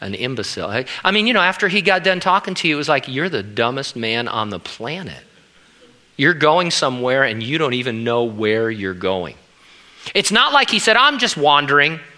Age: 40-59